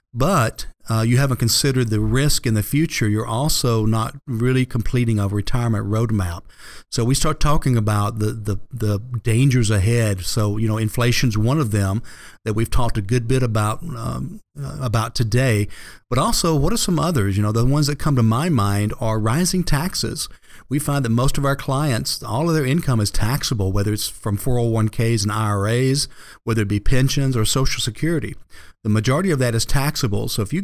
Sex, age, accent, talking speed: male, 50-69, American, 190 wpm